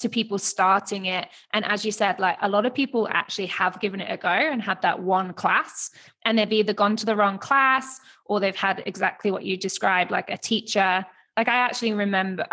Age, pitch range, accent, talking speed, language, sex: 20-39, 190-225 Hz, British, 220 wpm, English, female